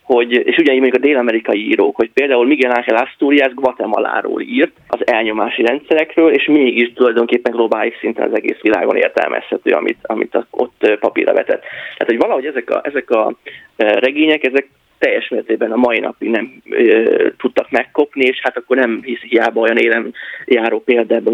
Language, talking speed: Hungarian, 165 wpm